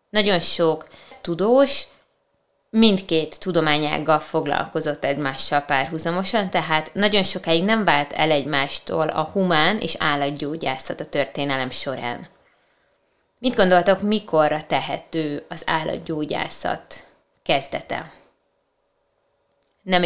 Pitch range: 150-190 Hz